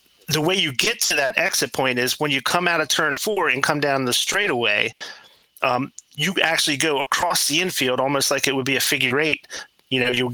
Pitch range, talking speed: 130-155 Hz, 225 wpm